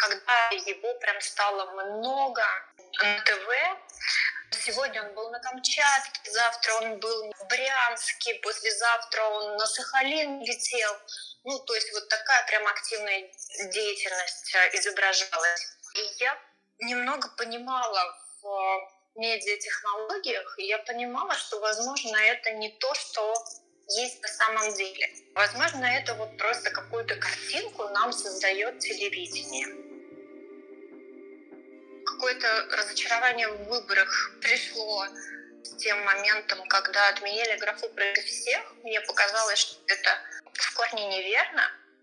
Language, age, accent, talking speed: Russian, 20-39, native, 110 wpm